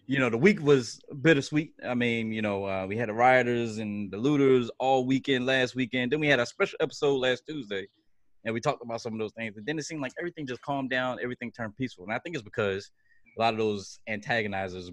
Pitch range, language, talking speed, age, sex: 110-155 Hz, English, 240 wpm, 20-39, male